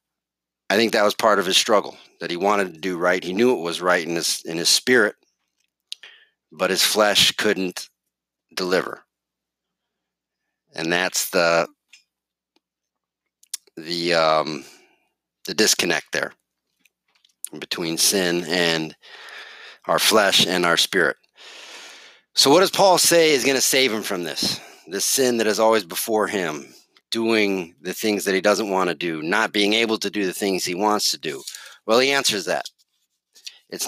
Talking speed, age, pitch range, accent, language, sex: 155 wpm, 40-59, 90-115 Hz, American, English, male